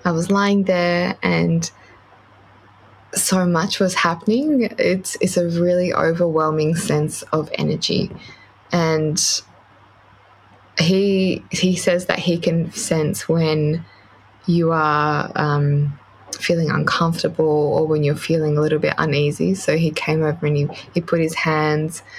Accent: Australian